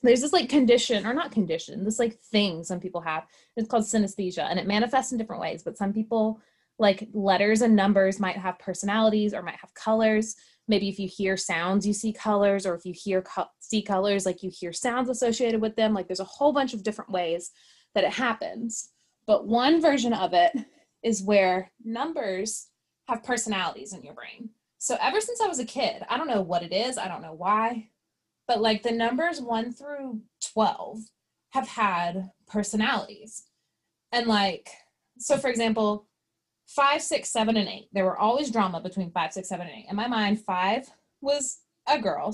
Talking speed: 190 wpm